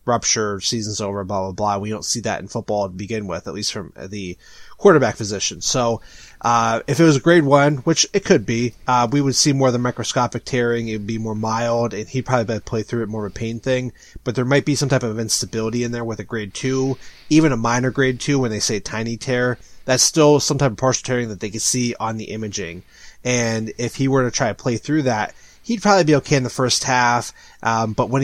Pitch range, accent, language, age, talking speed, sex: 110-135 Hz, American, English, 30-49, 250 wpm, male